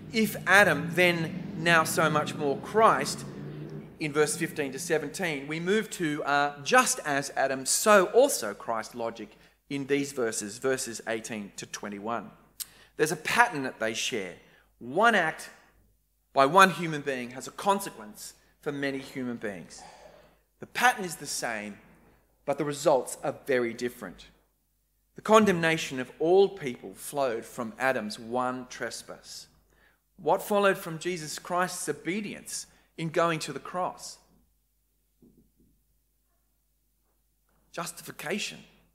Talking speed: 130 wpm